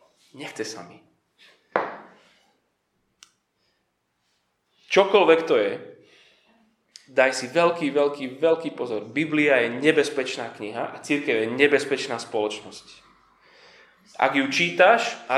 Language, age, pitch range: Slovak, 20-39, 140-230 Hz